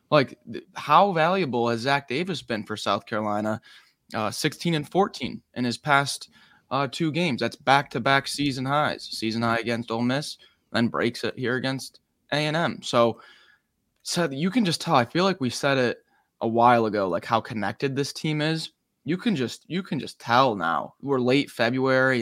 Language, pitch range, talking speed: English, 115-155 Hz, 185 wpm